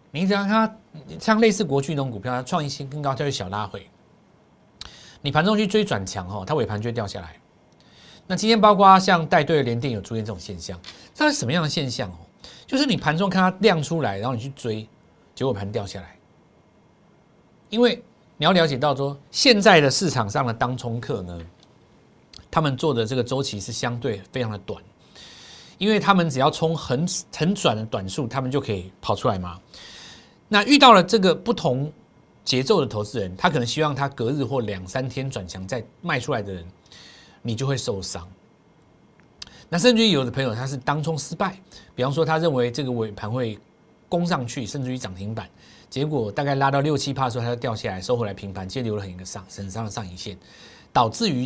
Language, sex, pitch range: Chinese, male, 105-165 Hz